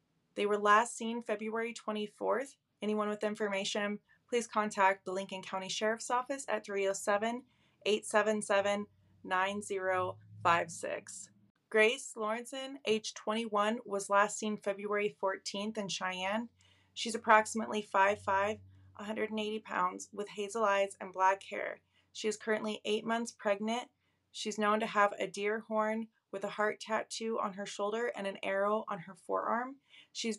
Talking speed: 135 wpm